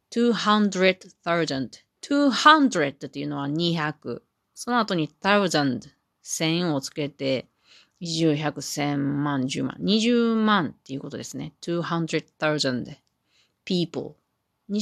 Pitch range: 140-195 Hz